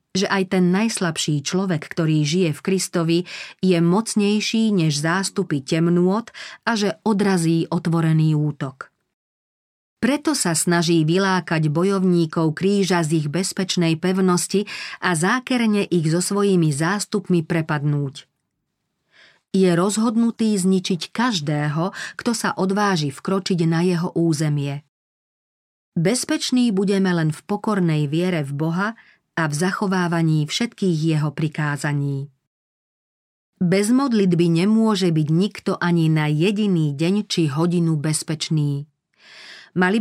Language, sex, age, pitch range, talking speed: Slovak, female, 40-59, 160-200 Hz, 110 wpm